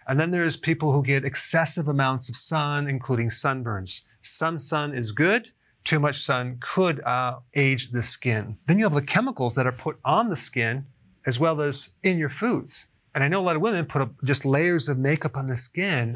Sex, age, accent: male, 40-59, American